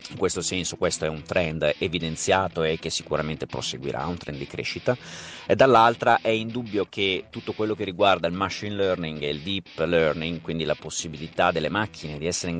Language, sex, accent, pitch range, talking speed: Italian, male, native, 80-100 Hz, 190 wpm